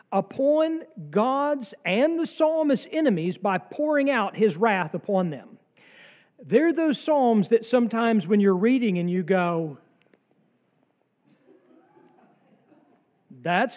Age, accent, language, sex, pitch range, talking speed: 40-59, American, English, male, 180-240 Hz, 110 wpm